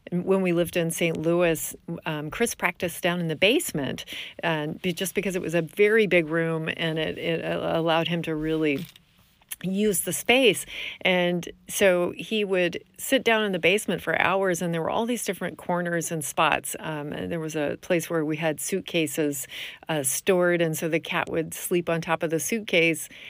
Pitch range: 160-195 Hz